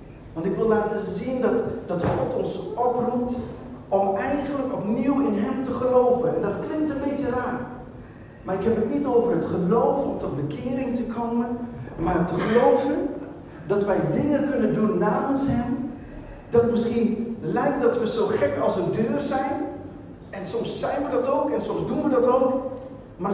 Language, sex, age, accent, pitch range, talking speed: Dutch, male, 40-59, Dutch, 185-245 Hz, 180 wpm